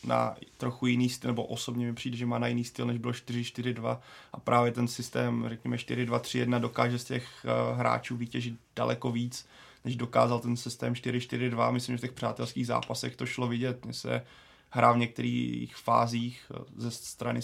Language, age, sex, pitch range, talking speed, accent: Czech, 20-39, male, 115-125 Hz, 175 wpm, native